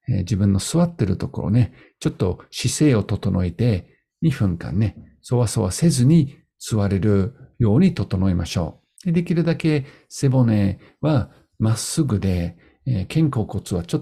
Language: Japanese